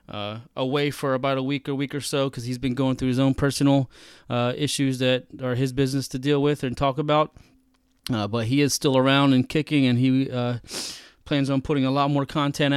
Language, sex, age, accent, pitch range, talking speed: English, male, 20-39, American, 125-150 Hz, 225 wpm